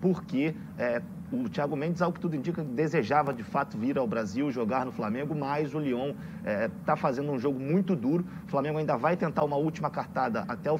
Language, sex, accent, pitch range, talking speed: Portuguese, male, Brazilian, 145-190 Hz, 200 wpm